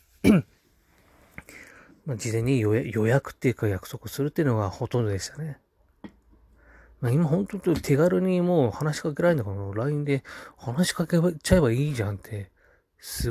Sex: male